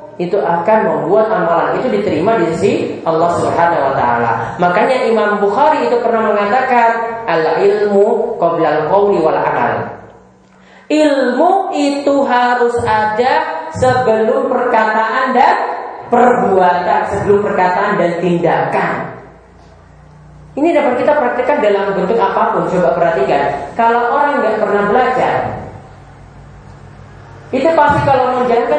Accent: native